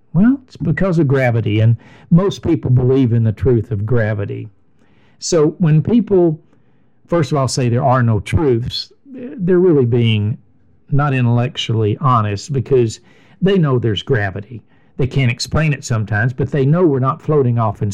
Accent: American